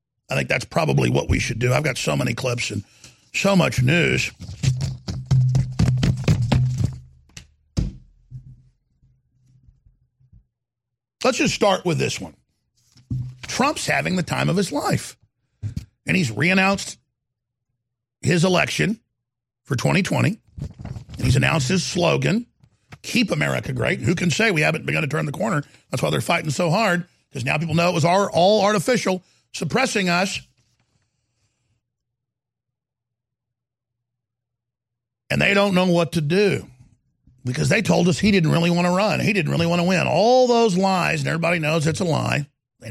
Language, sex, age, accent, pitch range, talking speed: English, male, 50-69, American, 120-170 Hz, 145 wpm